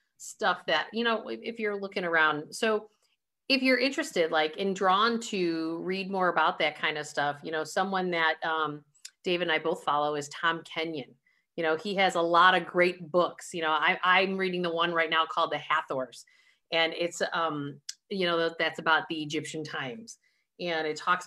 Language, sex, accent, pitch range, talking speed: English, female, American, 160-205 Hz, 195 wpm